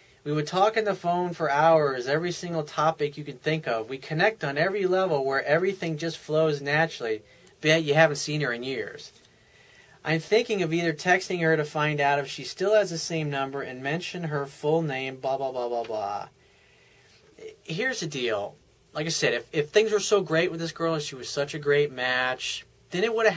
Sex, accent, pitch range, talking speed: male, American, 140-170 Hz, 215 wpm